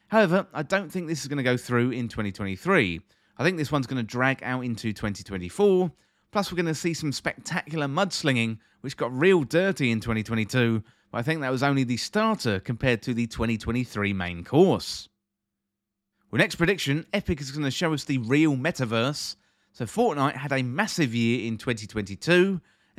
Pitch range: 115-165 Hz